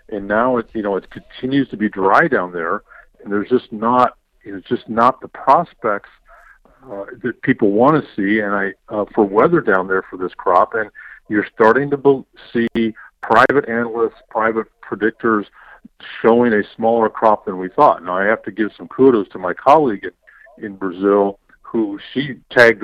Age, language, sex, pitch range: 50-69, English, male, 100-125 Hz